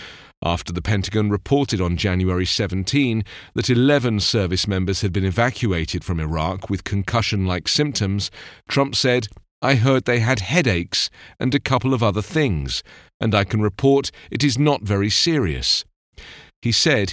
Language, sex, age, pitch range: English, male, 40-59, 95-140 Hz